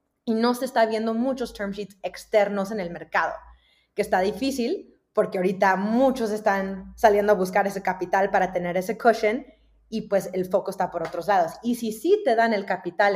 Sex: female